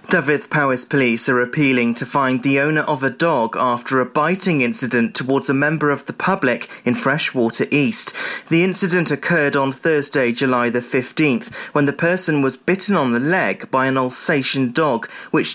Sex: male